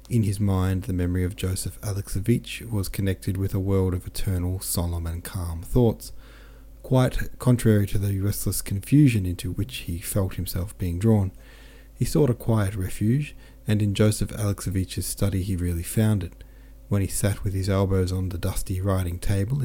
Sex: male